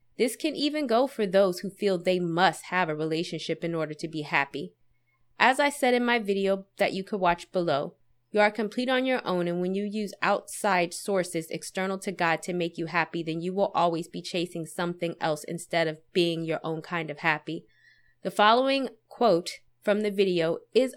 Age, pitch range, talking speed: 20-39, 165-210 Hz, 205 wpm